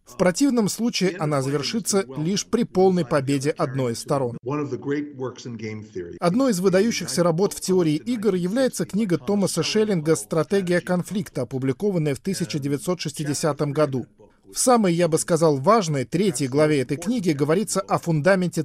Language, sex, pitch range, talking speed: Russian, male, 145-190 Hz, 135 wpm